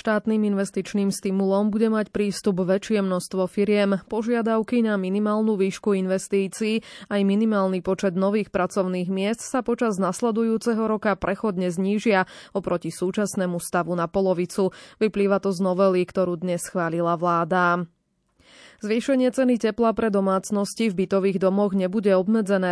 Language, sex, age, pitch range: Slovak, female, 20-39, 180-210 Hz